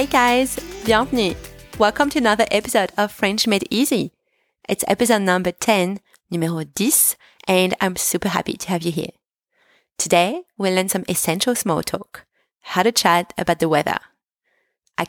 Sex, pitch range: female, 170-235 Hz